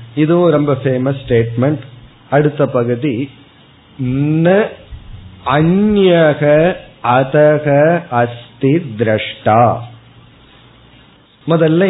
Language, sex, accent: Tamil, male, native